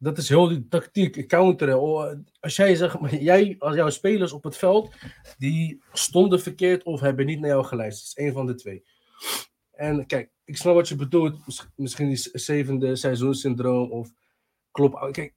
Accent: Dutch